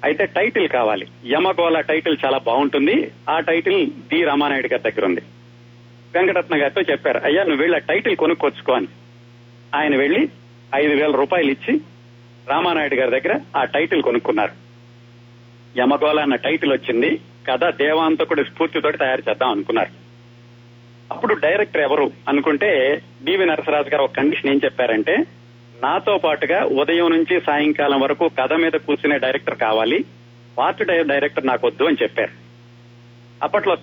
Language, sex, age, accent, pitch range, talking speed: Telugu, male, 40-59, native, 120-150 Hz, 130 wpm